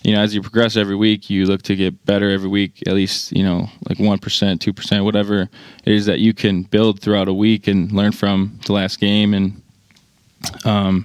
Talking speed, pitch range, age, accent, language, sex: 210 wpm, 95-105 Hz, 20-39, American, English, male